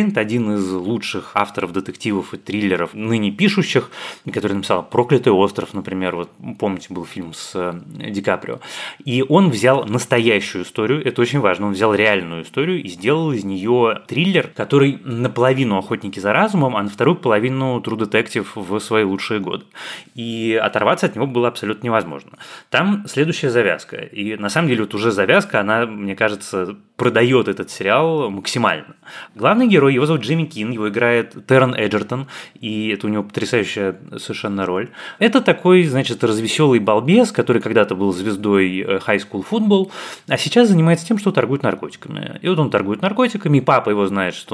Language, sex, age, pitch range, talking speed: Russian, male, 20-39, 100-145 Hz, 165 wpm